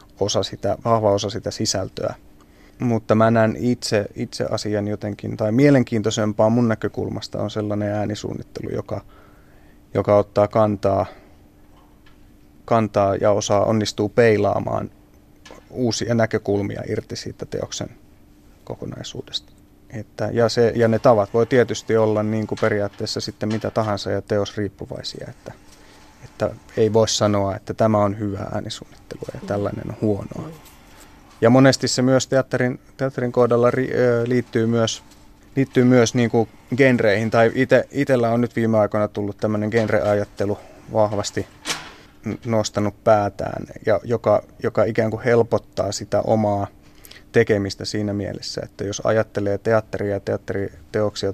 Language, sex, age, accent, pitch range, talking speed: Finnish, male, 30-49, native, 100-115 Hz, 130 wpm